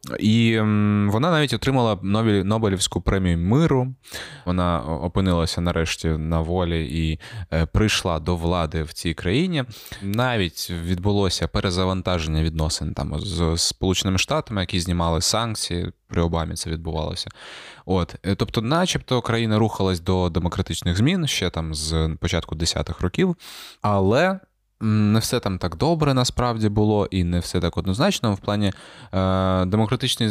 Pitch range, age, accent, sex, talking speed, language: 85-110 Hz, 20-39, native, male, 130 wpm, Ukrainian